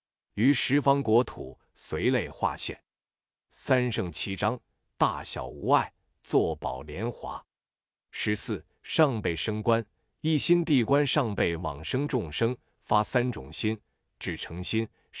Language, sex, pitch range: Chinese, male, 95-125 Hz